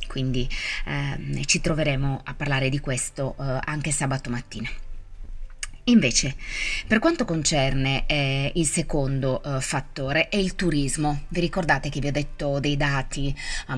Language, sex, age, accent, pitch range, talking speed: Italian, female, 20-39, native, 135-160 Hz, 145 wpm